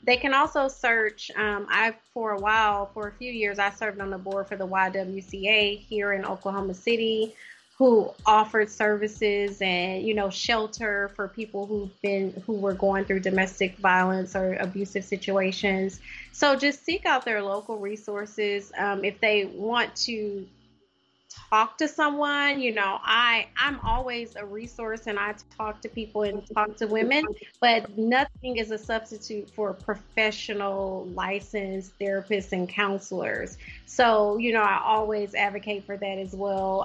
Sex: female